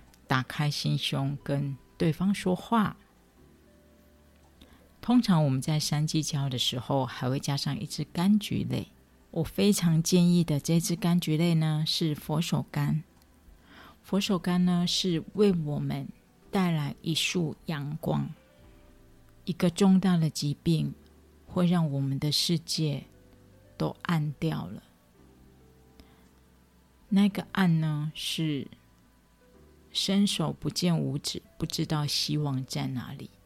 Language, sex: Chinese, female